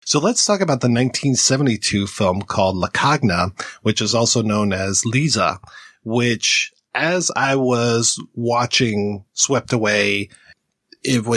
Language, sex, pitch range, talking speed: English, male, 105-135 Hz, 125 wpm